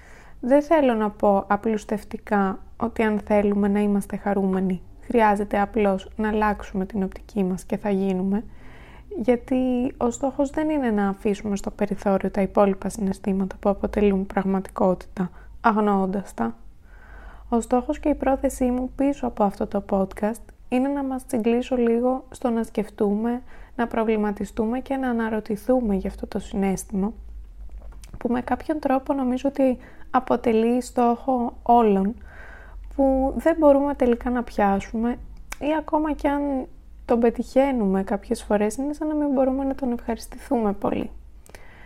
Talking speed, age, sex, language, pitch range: 140 wpm, 20-39, female, Greek, 200-255 Hz